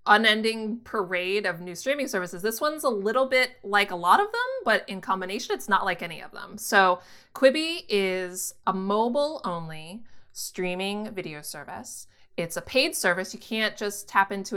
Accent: American